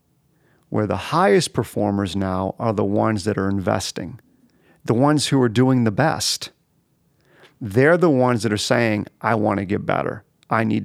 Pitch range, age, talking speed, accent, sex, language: 105-140 Hz, 40-59, 165 wpm, American, male, English